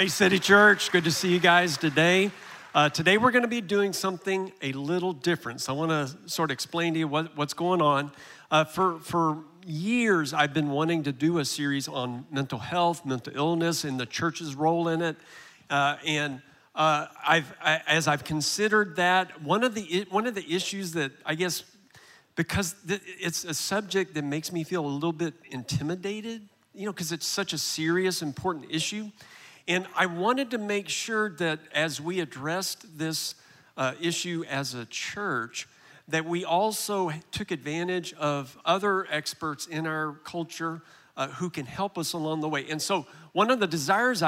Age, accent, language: 50-69, American, English